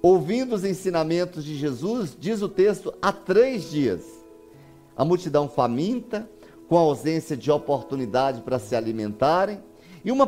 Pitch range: 145-220 Hz